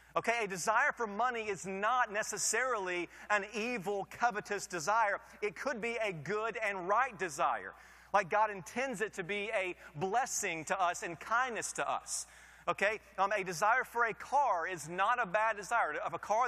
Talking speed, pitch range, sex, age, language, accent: 180 wpm, 180-230 Hz, male, 30-49, English, American